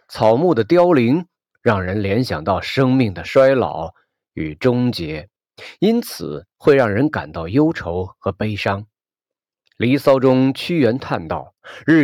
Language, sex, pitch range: Chinese, male, 100-140 Hz